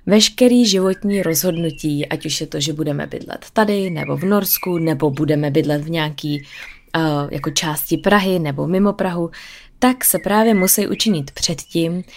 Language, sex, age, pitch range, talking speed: Czech, female, 20-39, 165-195 Hz, 160 wpm